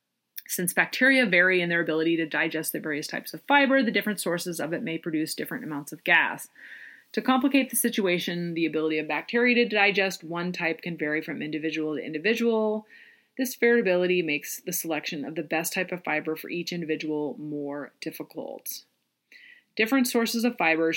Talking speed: 175 wpm